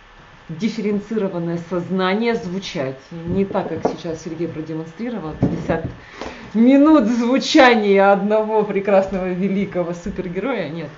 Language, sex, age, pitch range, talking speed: Russian, female, 30-49, 165-205 Hz, 95 wpm